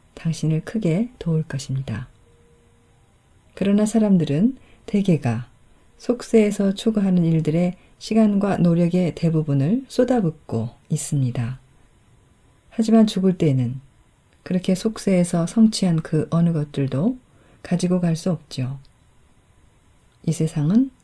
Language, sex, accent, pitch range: Korean, female, native, 135-195 Hz